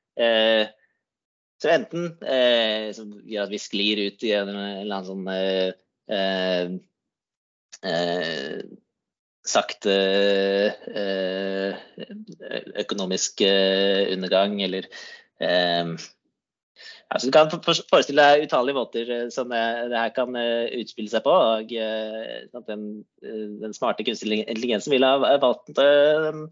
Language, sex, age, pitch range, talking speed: Swedish, male, 20-39, 100-135 Hz, 95 wpm